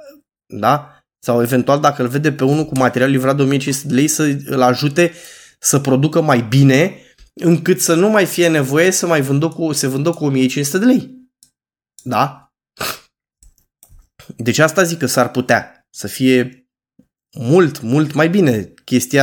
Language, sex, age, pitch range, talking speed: Romanian, male, 20-39, 130-170 Hz, 160 wpm